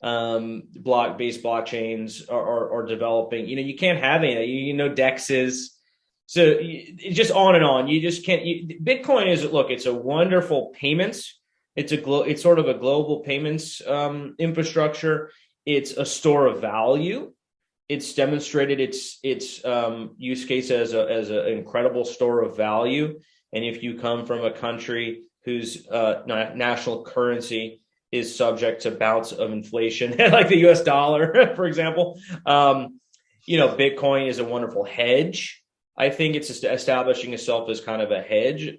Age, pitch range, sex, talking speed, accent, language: 30-49, 120-160 Hz, male, 165 wpm, American, English